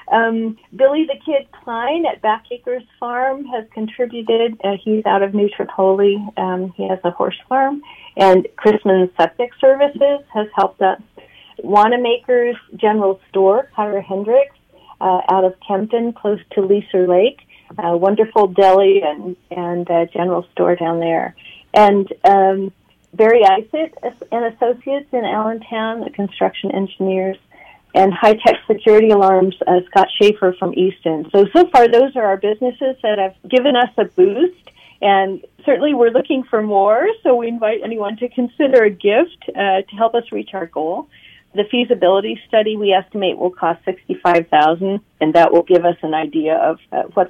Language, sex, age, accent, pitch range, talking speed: English, female, 40-59, American, 190-240 Hz, 155 wpm